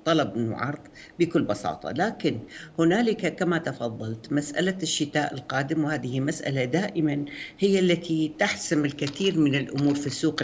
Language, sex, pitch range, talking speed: Arabic, female, 130-175 Hz, 125 wpm